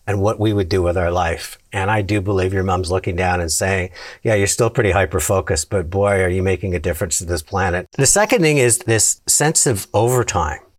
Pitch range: 100-125 Hz